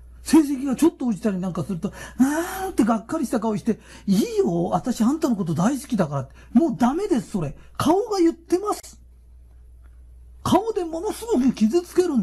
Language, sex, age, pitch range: Japanese, male, 40-59, 185-305 Hz